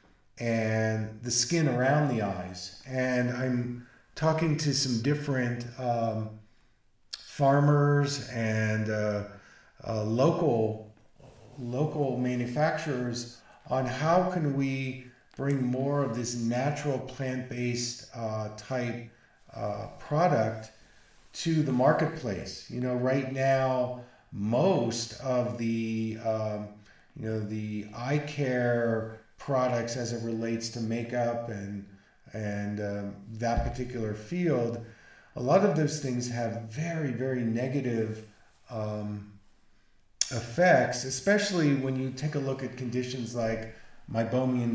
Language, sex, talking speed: English, male, 115 wpm